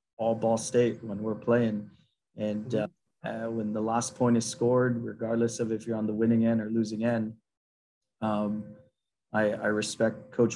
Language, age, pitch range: English, 20-39, 110-120 Hz